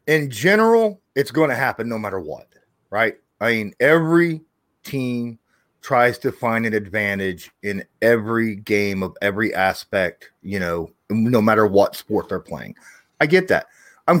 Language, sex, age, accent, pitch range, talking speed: English, male, 30-49, American, 110-165 Hz, 155 wpm